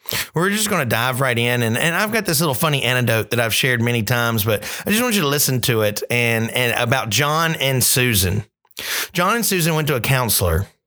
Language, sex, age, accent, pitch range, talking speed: English, male, 30-49, American, 115-150 Hz, 230 wpm